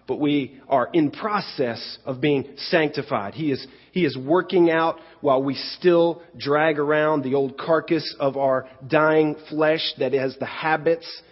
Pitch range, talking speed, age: 115-155 Hz, 160 wpm, 40-59